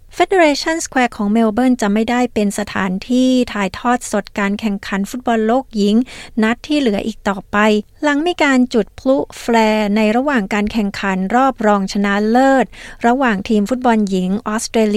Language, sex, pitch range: Thai, female, 205-235 Hz